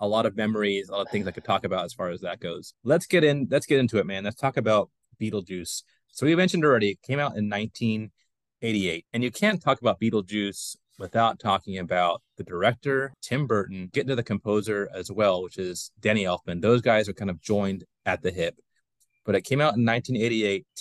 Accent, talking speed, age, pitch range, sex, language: American, 220 wpm, 30-49, 100-125 Hz, male, English